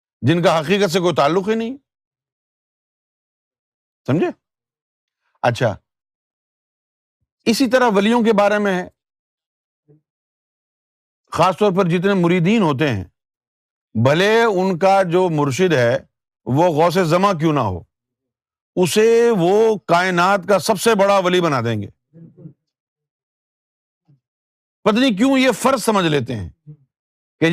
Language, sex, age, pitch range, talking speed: Urdu, male, 50-69, 135-190 Hz, 120 wpm